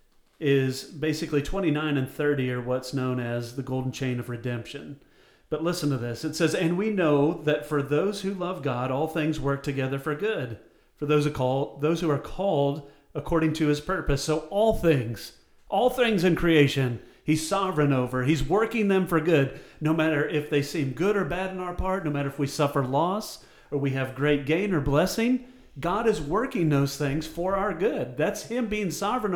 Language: English